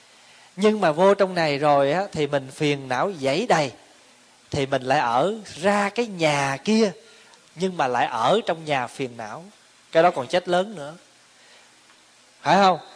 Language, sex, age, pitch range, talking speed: Vietnamese, male, 20-39, 135-180 Hz, 165 wpm